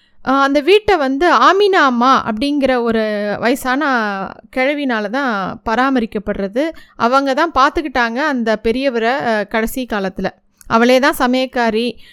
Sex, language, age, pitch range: female, Tamil, 20-39, 245-305 Hz